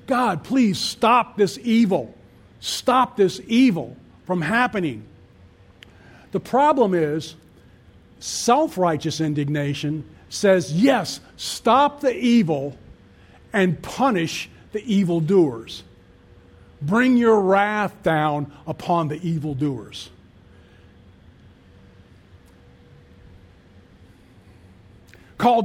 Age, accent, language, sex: 50-69, American, English, male